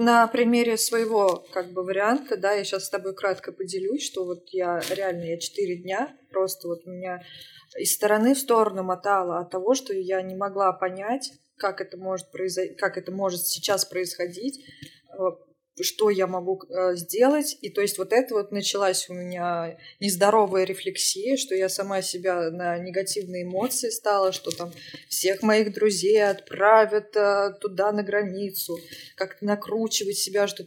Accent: native